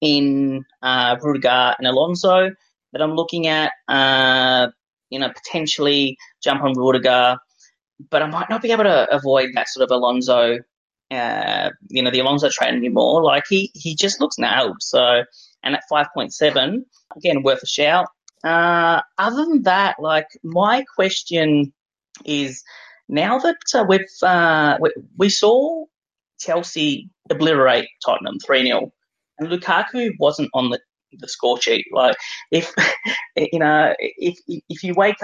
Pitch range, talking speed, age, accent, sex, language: 135-200 Hz, 145 wpm, 20-39, Australian, female, English